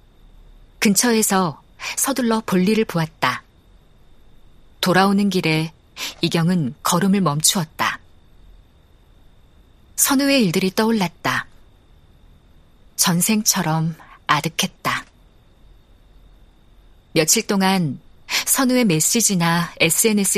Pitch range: 145-205 Hz